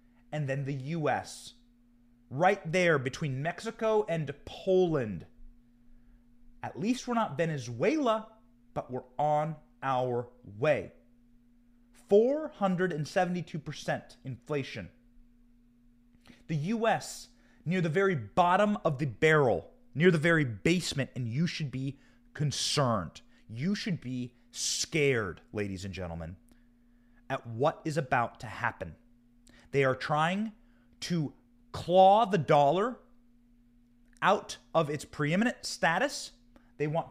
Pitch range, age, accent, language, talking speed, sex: 120-165 Hz, 30-49, American, English, 110 wpm, male